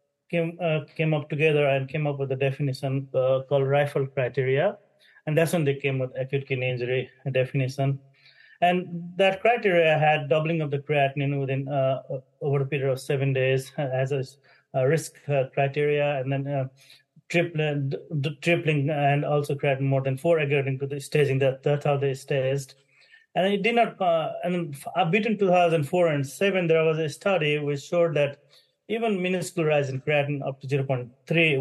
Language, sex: English, male